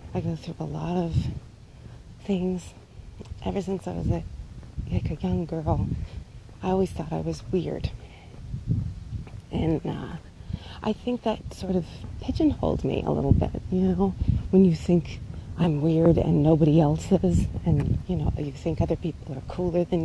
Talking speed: 160 wpm